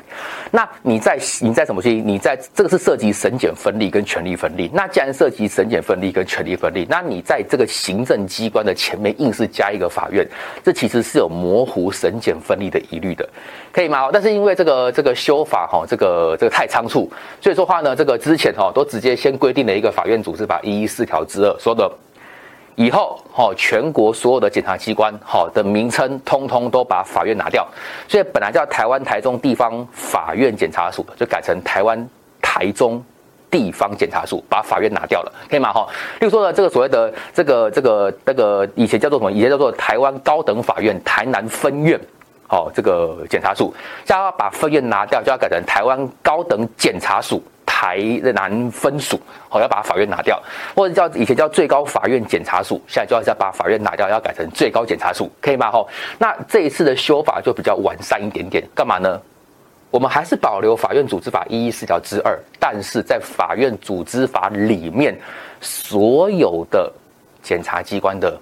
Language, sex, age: Chinese, male, 30-49